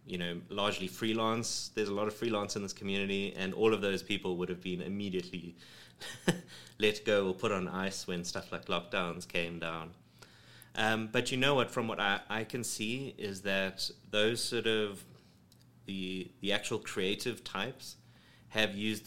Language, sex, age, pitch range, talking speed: English, male, 30-49, 90-105 Hz, 175 wpm